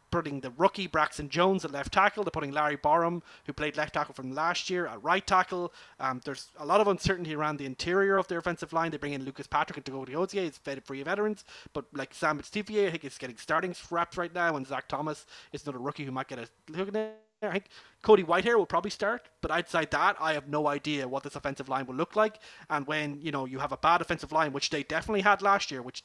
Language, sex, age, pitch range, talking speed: English, male, 30-49, 140-175 Hz, 260 wpm